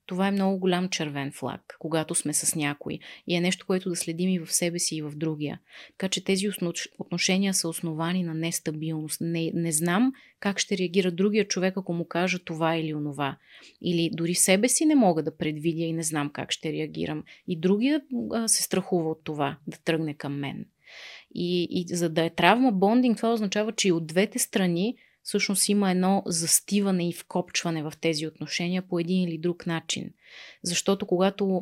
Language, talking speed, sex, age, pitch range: Bulgarian, 190 wpm, female, 30-49, 165-195 Hz